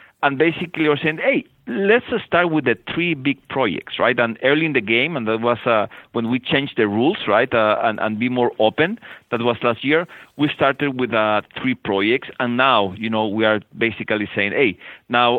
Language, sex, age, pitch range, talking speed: English, male, 40-59, 115-150 Hz, 215 wpm